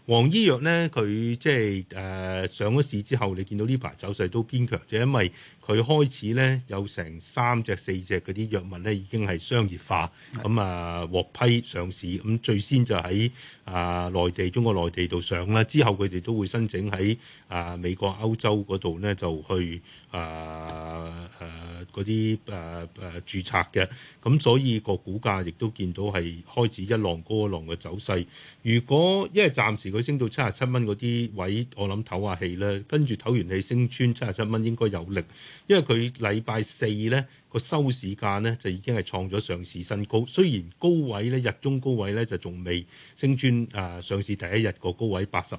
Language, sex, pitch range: Chinese, male, 90-120 Hz